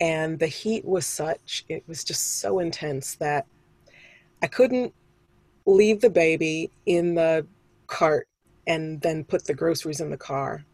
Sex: female